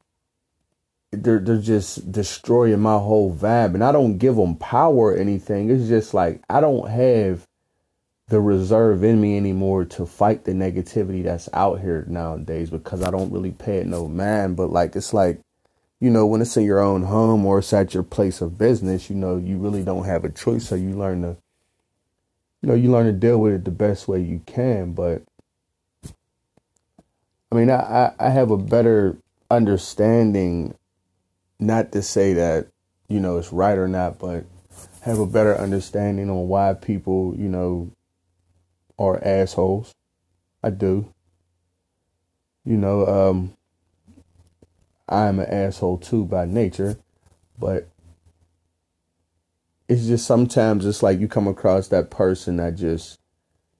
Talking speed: 155 wpm